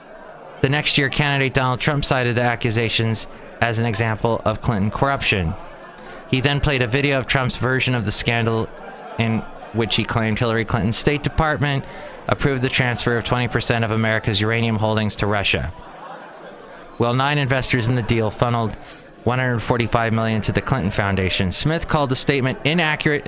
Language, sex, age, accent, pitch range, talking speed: English, male, 30-49, American, 110-135 Hz, 160 wpm